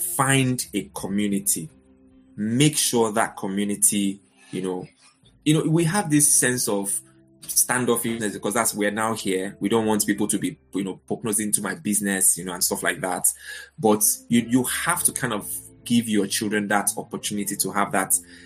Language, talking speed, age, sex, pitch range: English, 180 wpm, 20-39, male, 95-115 Hz